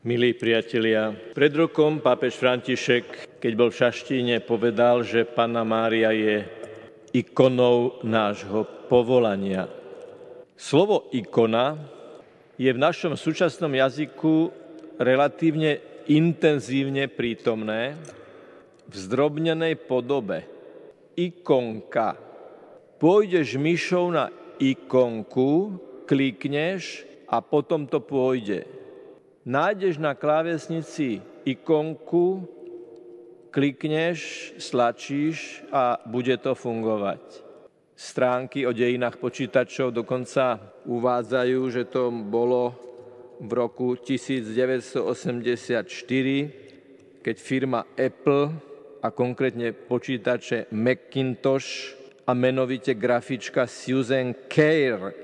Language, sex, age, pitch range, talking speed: Slovak, male, 50-69, 120-150 Hz, 85 wpm